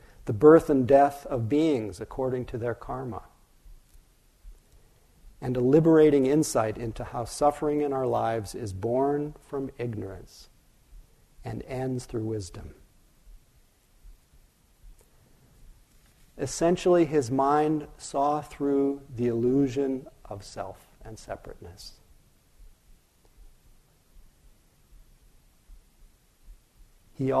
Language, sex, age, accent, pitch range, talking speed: English, male, 50-69, American, 115-145 Hz, 90 wpm